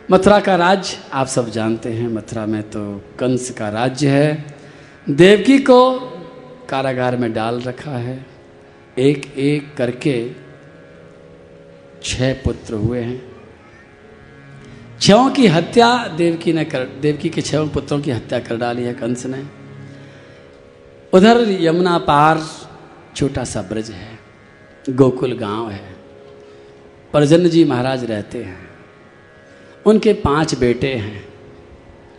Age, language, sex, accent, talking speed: 50-69, Hindi, male, native, 120 wpm